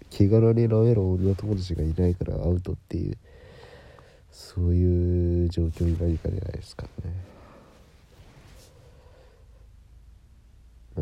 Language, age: Japanese, 50-69